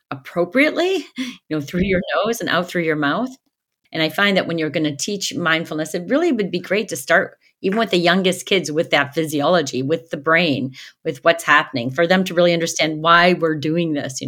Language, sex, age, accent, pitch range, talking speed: English, female, 40-59, American, 145-180 Hz, 220 wpm